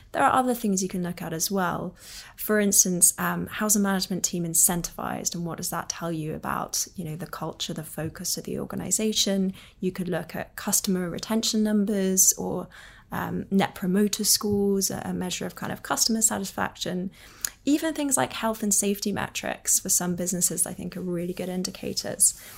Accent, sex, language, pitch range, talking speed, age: British, female, English, 175-205 Hz, 185 wpm, 20-39